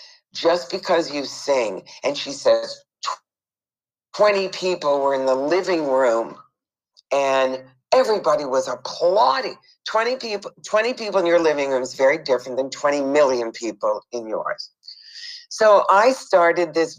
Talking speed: 135 wpm